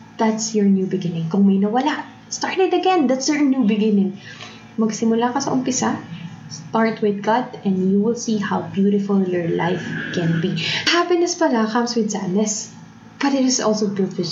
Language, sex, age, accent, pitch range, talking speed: English, female, 20-39, Filipino, 195-250 Hz, 175 wpm